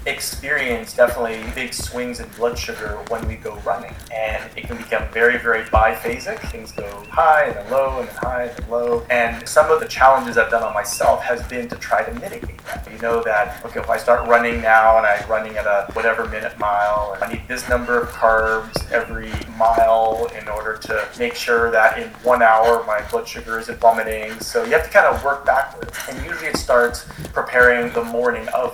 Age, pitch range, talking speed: 30-49, 110-125 Hz, 210 wpm